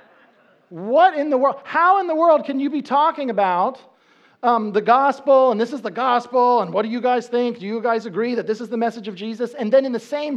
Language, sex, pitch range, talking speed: English, male, 220-290 Hz, 250 wpm